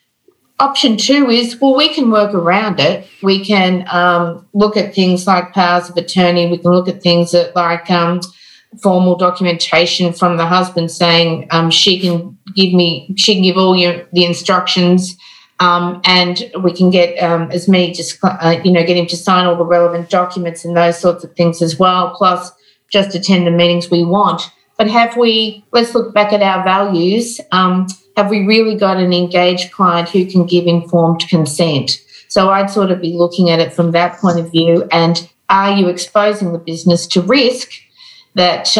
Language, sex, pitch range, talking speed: English, female, 170-195 Hz, 190 wpm